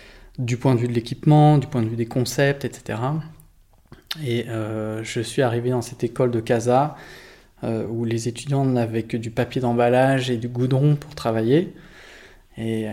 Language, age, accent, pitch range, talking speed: French, 20-39, French, 115-135 Hz, 175 wpm